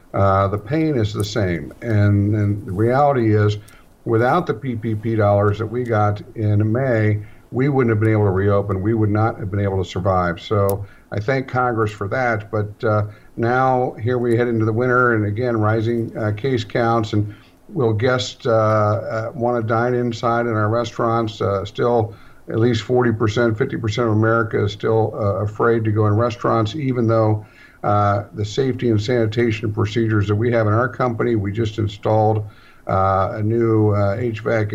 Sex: male